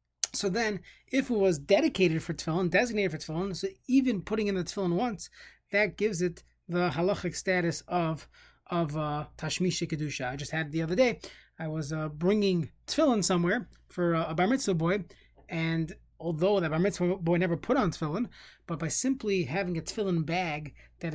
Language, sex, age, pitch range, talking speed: English, male, 20-39, 165-205 Hz, 185 wpm